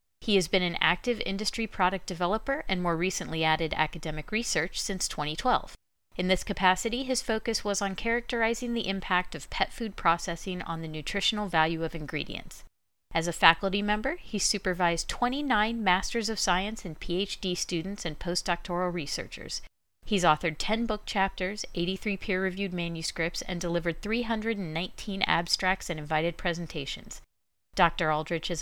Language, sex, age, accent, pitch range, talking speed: English, female, 40-59, American, 165-210 Hz, 145 wpm